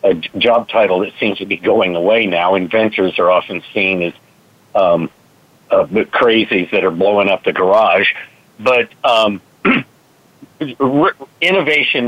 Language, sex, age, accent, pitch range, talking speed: English, male, 50-69, American, 95-125 Hz, 135 wpm